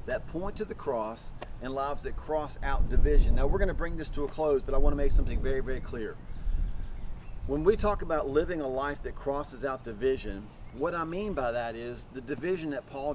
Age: 40-59